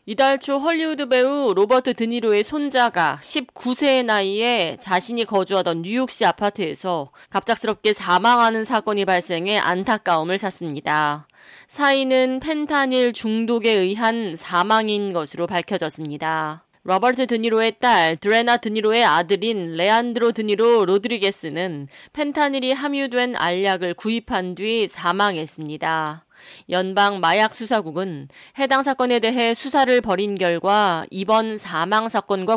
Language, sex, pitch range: Korean, female, 180-235 Hz